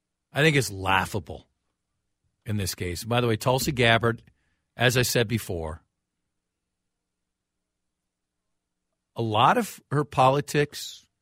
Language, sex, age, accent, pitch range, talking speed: English, male, 50-69, American, 95-125 Hz, 110 wpm